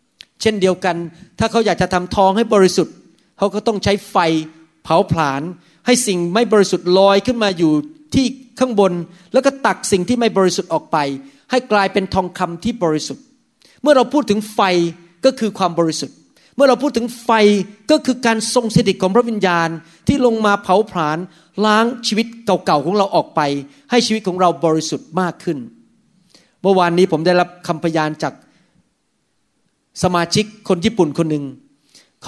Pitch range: 170-220 Hz